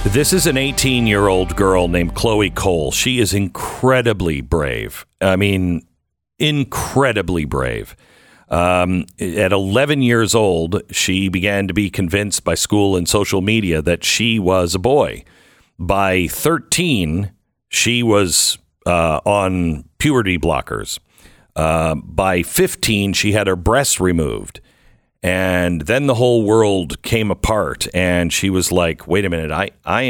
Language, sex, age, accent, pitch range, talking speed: English, male, 50-69, American, 85-115 Hz, 140 wpm